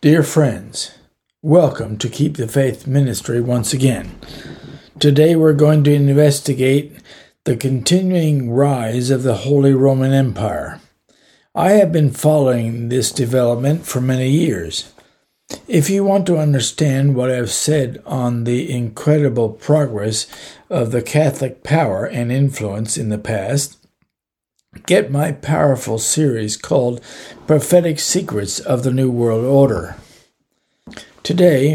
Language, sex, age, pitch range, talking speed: English, male, 60-79, 120-150 Hz, 125 wpm